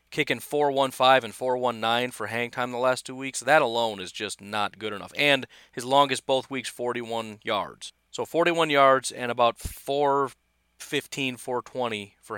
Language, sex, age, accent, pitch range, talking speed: English, male, 40-59, American, 110-165 Hz, 170 wpm